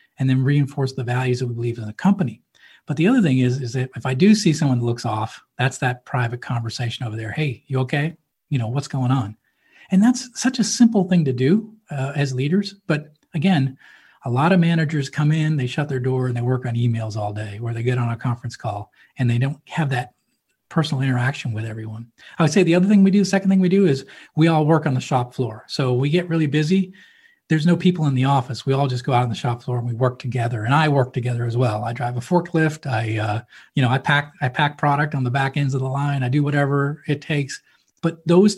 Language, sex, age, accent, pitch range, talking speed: English, male, 40-59, American, 125-165 Hz, 255 wpm